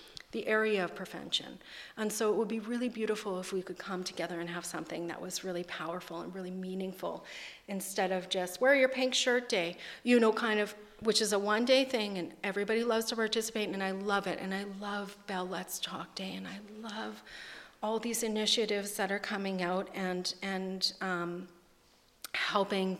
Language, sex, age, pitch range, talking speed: English, female, 40-59, 185-215 Hz, 190 wpm